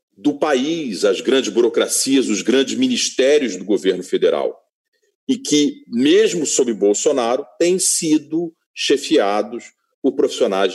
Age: 40-59